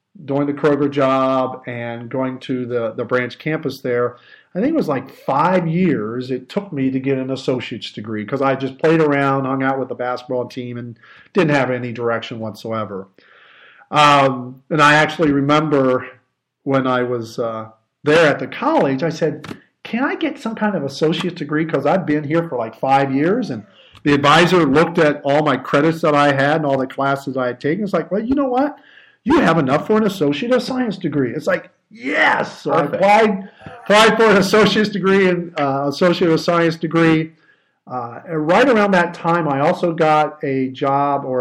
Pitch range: 130-165 Hz